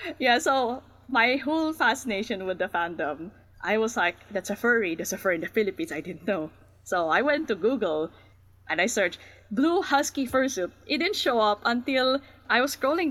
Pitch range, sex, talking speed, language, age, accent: 195-280 Hz, female, 190 wpm, English, 20-39, Filipino